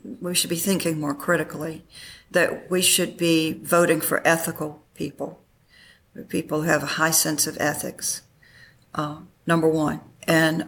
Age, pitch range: 50-69, 160-190 Hz